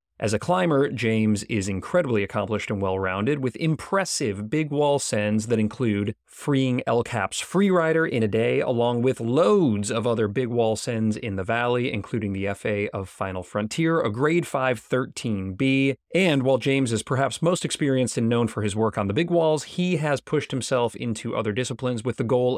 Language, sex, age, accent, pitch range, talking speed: English, male, 30-49, American, 110-145 Hz, 185 wpm